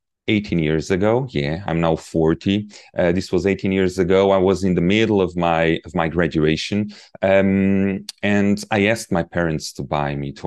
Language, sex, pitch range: English, male, 80-100 Hz